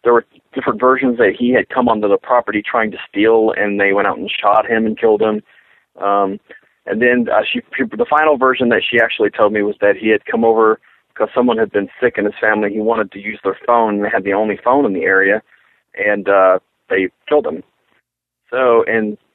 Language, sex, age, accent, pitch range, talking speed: English, male, 40-59, American, 105-130 Hz, 230 wpm